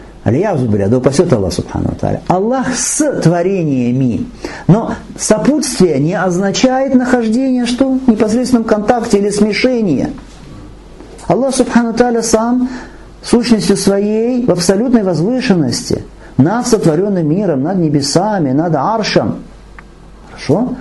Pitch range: 155-245 Hz